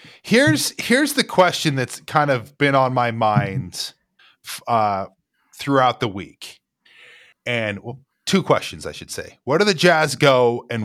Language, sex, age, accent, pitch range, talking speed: English, male, 20-39, American, 120-175 Hz, 150 wpm